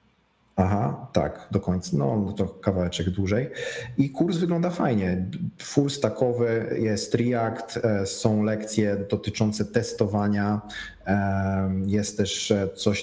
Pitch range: 100-115 Hz